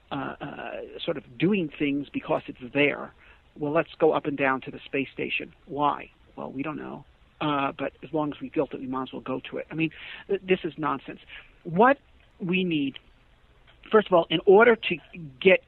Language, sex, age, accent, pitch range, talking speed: English, male, 50-69, American, 150-200 Hz, 205 wpm